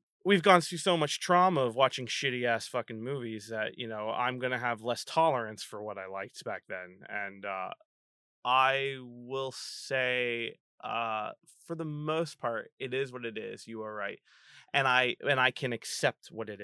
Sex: male